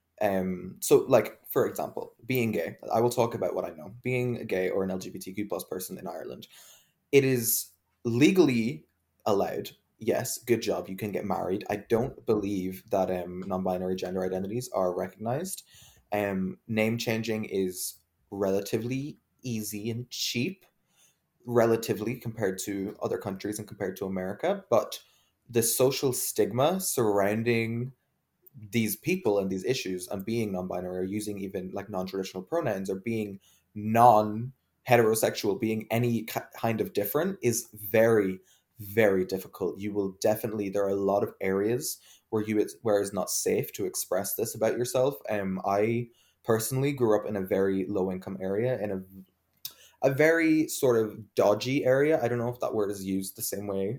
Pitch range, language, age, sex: 95-120 Hz, English, 20-39, male